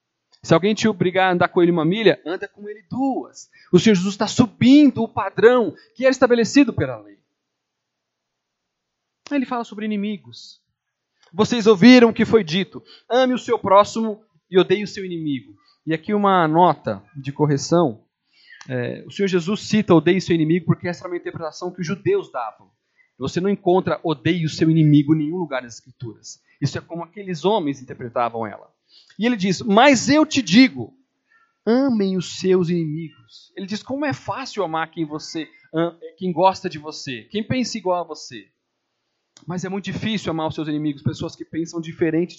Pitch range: 165-230 Hz